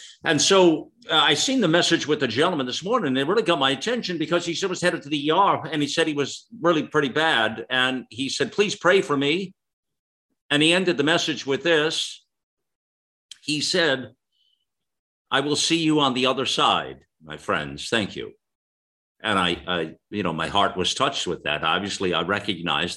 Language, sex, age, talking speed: English, male, 50-69, 200 wpm